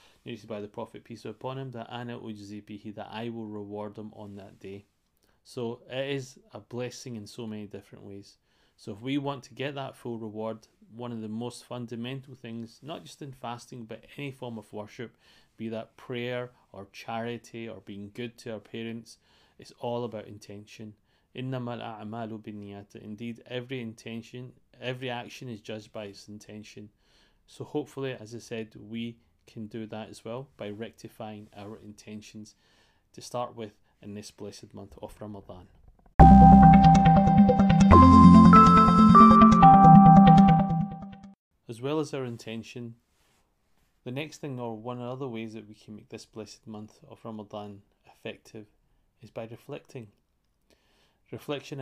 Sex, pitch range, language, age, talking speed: male, 105-125 Hz, English, 30-49, 145 wpm